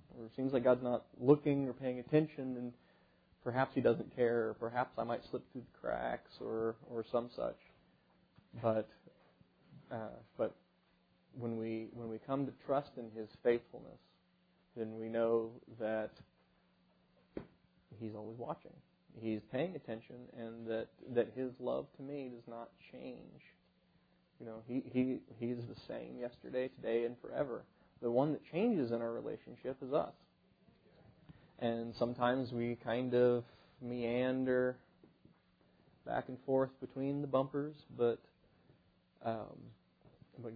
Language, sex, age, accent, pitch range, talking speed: English, male, 30-49, American, 115-130 Hz, 140 wpm